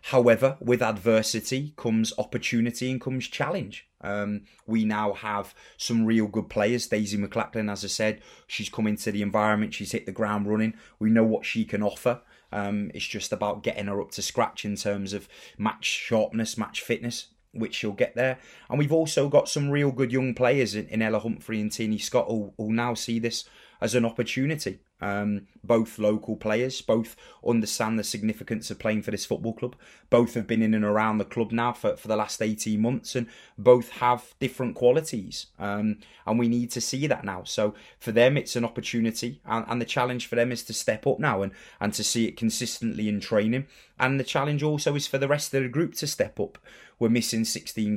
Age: 30-49